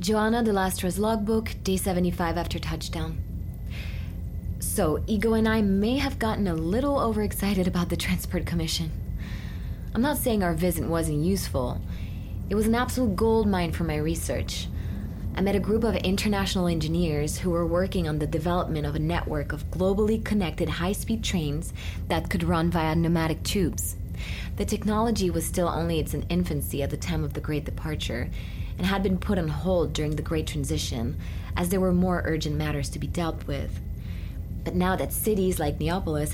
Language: English